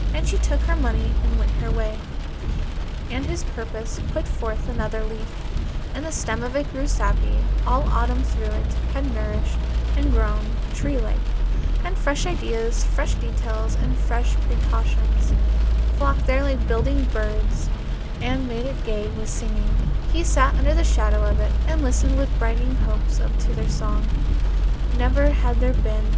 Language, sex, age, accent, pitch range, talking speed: English, female, 10-29, American, 70-80 Hz, 165 wpm